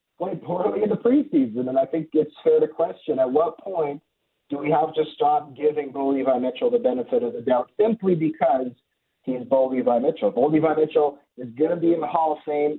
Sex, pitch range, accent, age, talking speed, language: male, 125-155 Hz, American, 30-49, 225 wpm, English